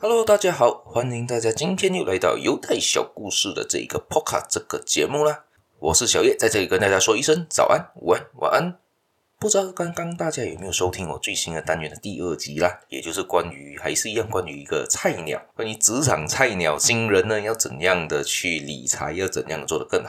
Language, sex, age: Chinese, male, 20-39